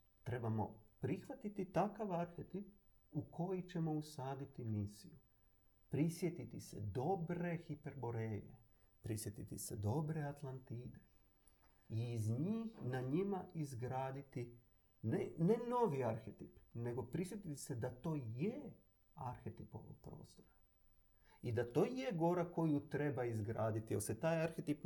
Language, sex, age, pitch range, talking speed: Croatian, male, 40-59, 110-155 Hz, 115 wpm